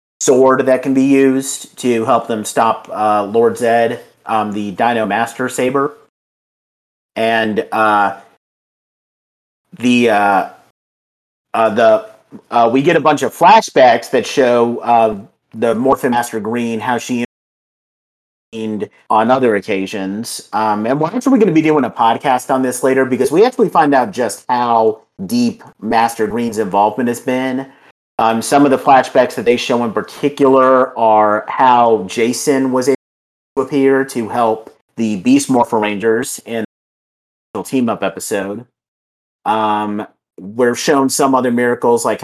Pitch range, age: 110-130 Hz, 40-59